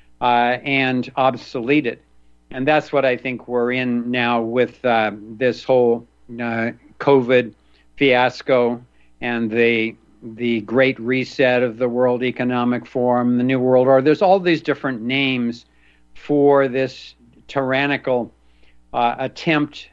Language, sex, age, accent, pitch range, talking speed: English, male, 60-79, American, 115-135 Hz, 130 wpm